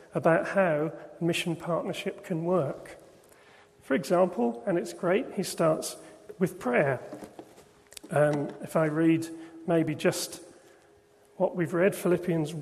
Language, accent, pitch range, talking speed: English, British, 165-195 Hz, 120 wpm